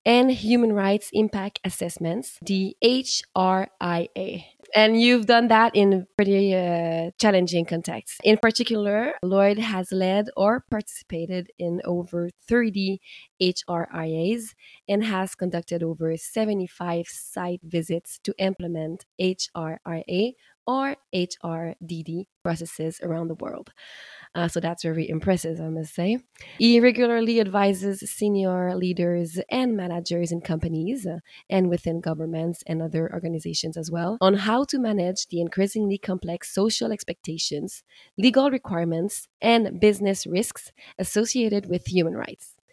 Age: 20-39